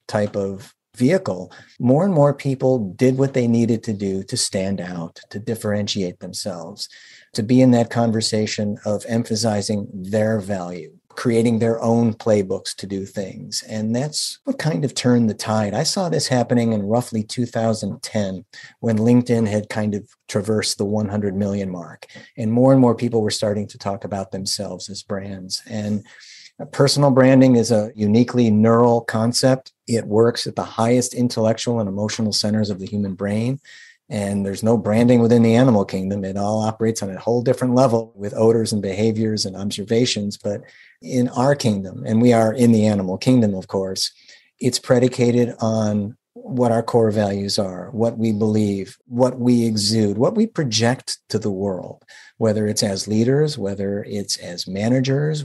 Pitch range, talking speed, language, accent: 100-120 Hz, 170 wpm, English, American